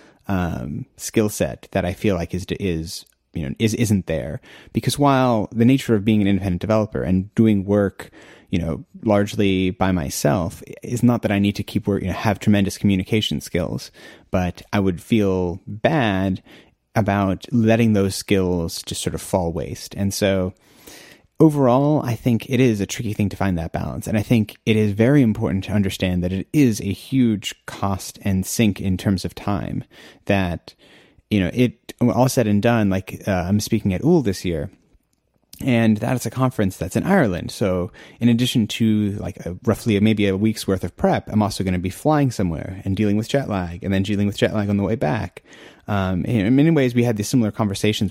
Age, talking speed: 30-49, 205 wpm